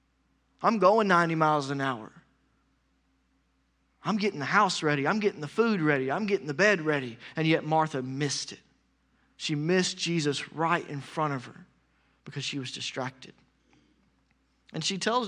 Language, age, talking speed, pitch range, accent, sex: English, 30-49, 160 wpm, 145-245 Hz, American, male